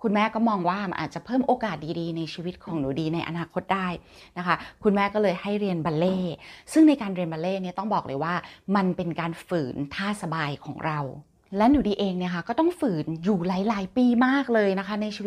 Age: 20-39